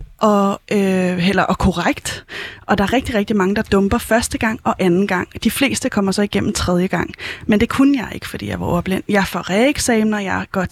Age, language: 30-49, Danish